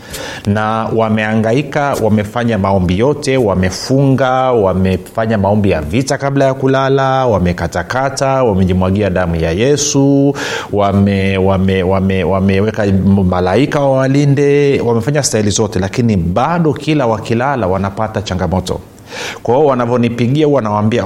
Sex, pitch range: male, 100-120 Hz